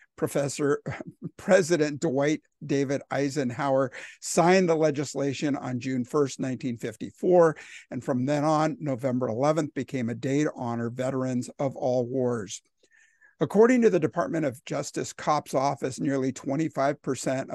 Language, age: English, 50-69